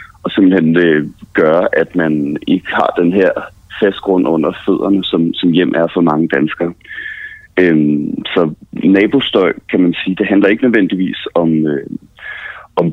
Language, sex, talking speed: Danish, male, 140 wpm